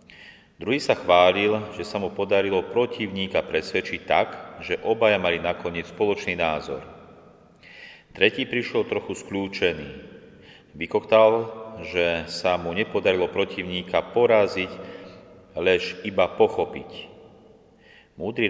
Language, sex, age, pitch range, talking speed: Slovak, male, 40-59, 85-105 Hz, 100 wpm